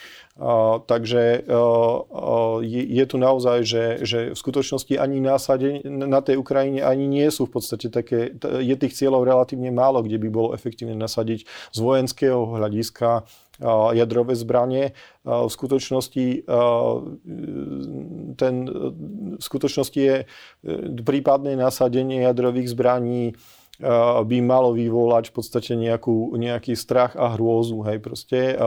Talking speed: 135 wpm